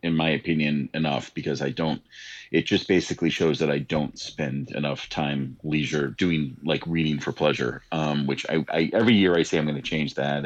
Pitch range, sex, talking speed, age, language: 70-80 Hz, male, 205 wpm, 40-59, English